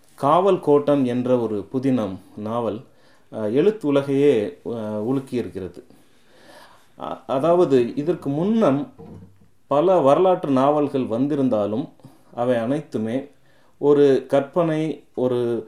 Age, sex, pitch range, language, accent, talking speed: 30-49, male, 115-145 Hz, Tamil, native, 80 wpm